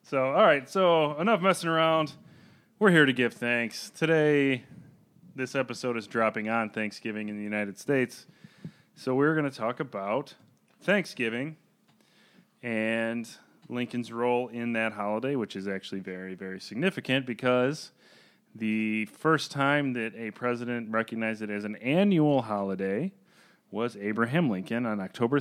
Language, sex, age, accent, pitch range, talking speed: English, male, 30-49, American, 100-130 Hz, 140 wpm